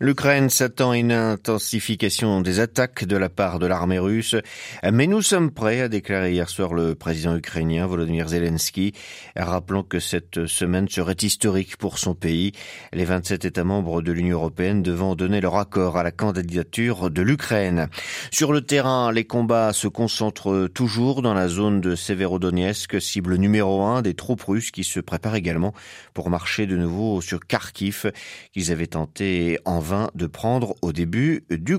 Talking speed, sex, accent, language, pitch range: 170 wpm, male, French, French, 90-125 Hz